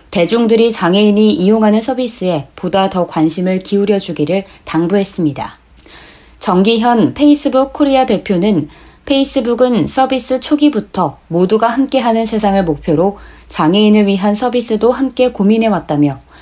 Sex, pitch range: female, 175-235 Hz